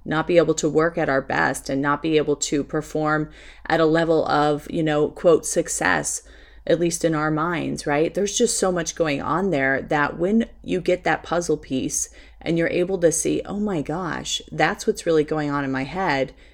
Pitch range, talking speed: 145-175 Hz, 210 wpm